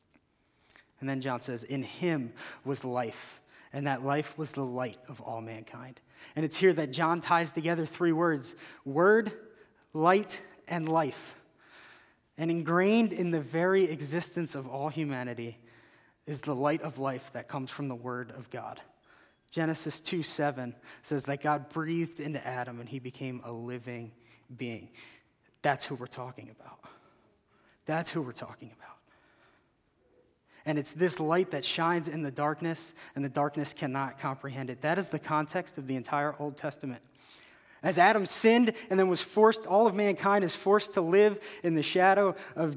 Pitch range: 135-180 Hz